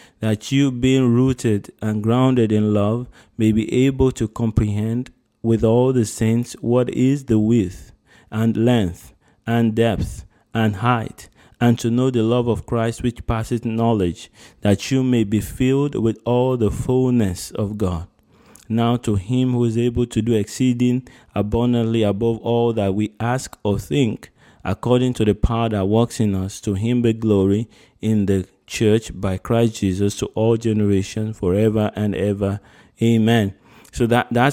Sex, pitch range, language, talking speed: male, 105-120 Hz, English, 160 wpm